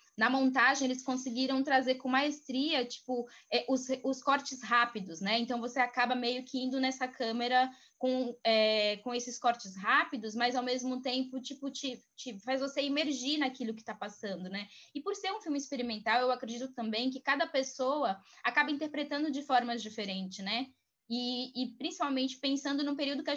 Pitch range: 215-265 Hz